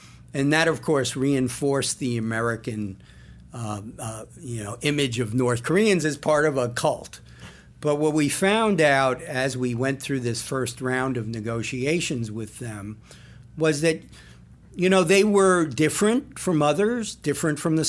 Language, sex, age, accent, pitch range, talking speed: English, male, 50-69, American, 120-160 Hz, 160 wpm